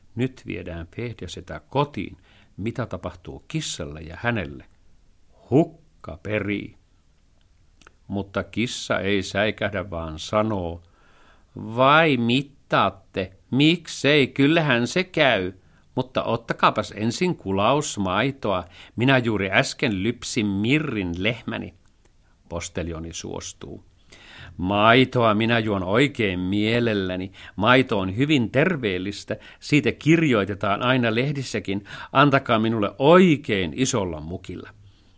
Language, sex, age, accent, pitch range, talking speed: Finnish, male, 50-69, native, 90-120 Hz, 90 wpm